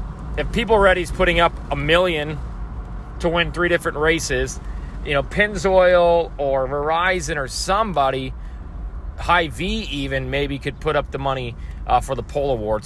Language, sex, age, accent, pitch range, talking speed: English, male, 30-49, American, 130-170 Hz, 155 wpm